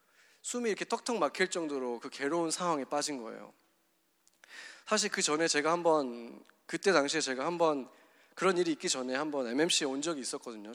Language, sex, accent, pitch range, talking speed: English, male, Korean, 135-185 Hz, 155 wpm